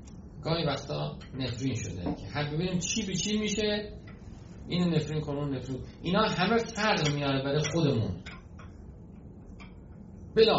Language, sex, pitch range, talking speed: Persian, male, 105-150 Hz, 120 wpm